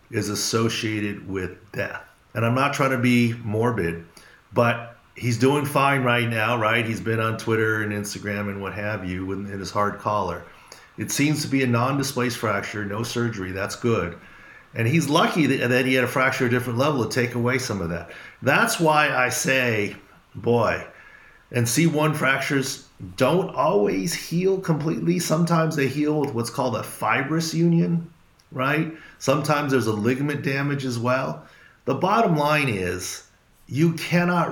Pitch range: 110-145 Hz